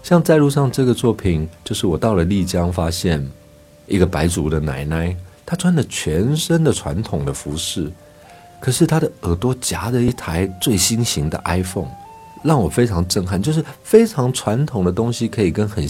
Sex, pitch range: male, 85-125 Hz